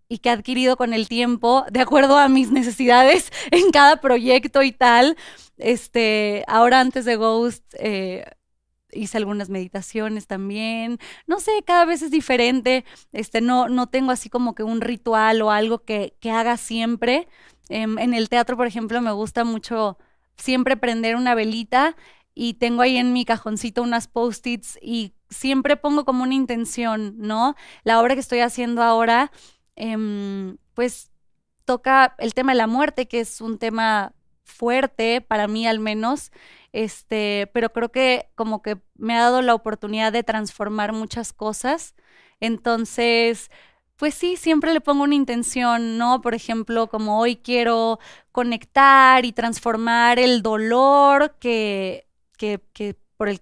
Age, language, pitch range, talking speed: 20-39, Spanish, 220-255 Hz, 150 wpm